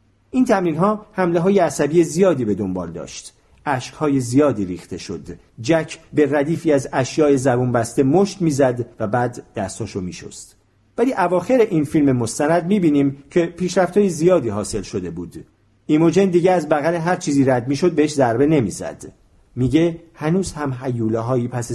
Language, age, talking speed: Persian, 50-69, 165 wpm